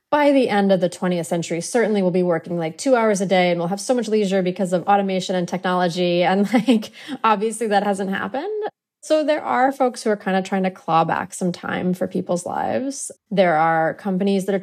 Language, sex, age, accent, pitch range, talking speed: English, female, 20-39, American, 165-195 Hz, 225 wpm